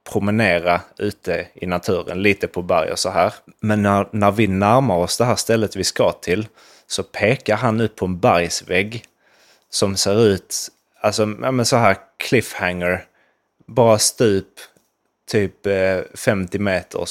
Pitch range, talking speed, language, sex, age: 95-115 Hz, 145 wpm, Swedish, male, 20-39